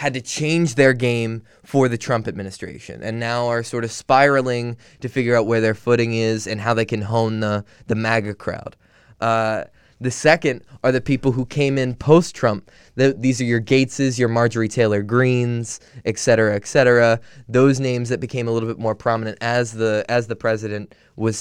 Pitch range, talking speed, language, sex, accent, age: 115-140 Hz, 190 wpm, English, male, American, 20-39